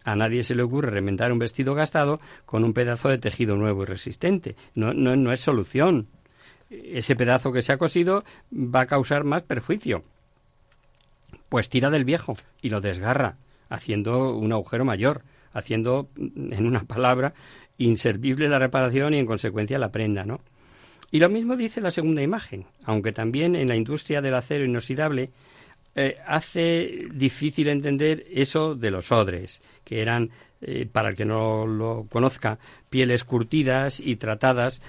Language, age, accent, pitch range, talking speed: Spanish, 50-69, Spanish, 115-140 Hz, 160 wpm